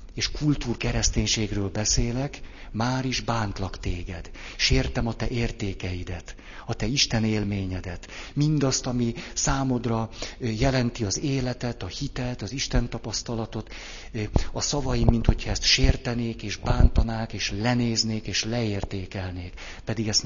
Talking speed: 115 wpm